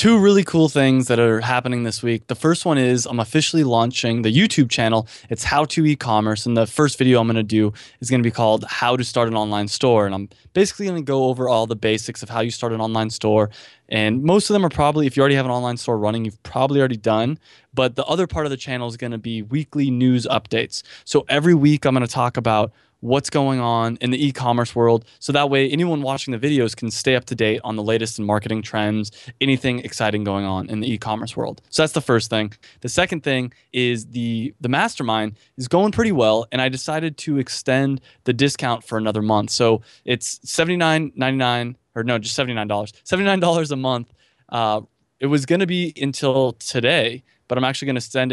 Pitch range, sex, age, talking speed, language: 115-145 Hz, male, 20-39, 235 wpm, English